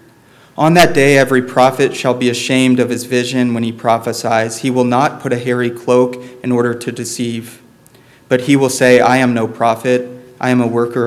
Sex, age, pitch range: male, 30-49, 115-130 Hz